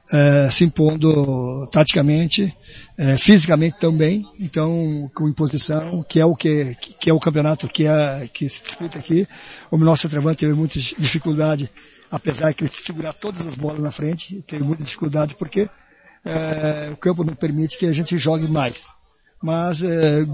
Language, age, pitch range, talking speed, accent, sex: Portuguese, 60-79, 155-190 Hz, 160 wpm, Brazilian, male